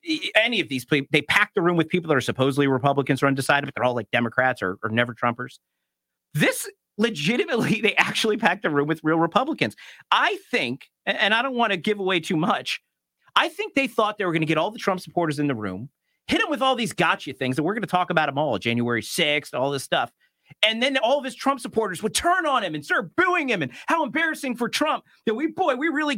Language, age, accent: English, 40-59, American